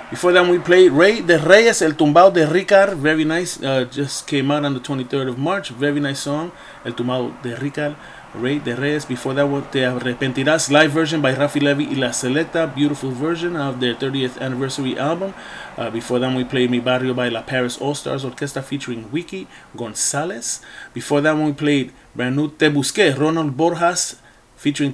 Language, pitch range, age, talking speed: English, 125-155 Hz, 30-49, 190 wpm